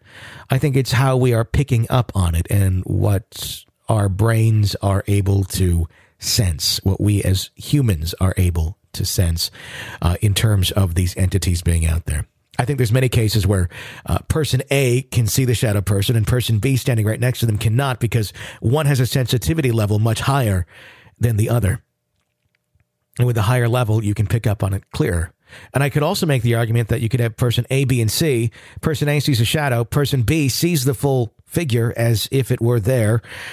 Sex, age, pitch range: male, 40-59, 95-130 Hz